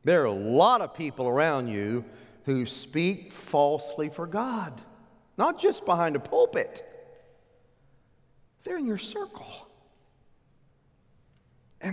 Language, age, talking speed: English, 40-59, 115 wpm